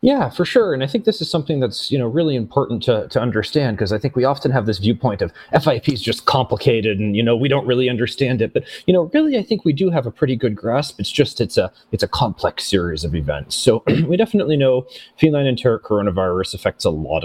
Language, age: English, 30-49